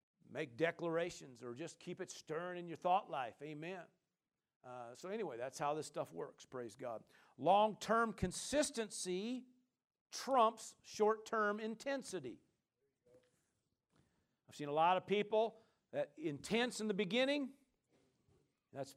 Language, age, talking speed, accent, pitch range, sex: English, 50-69, 125 wpm, American, 145-205 Hz, male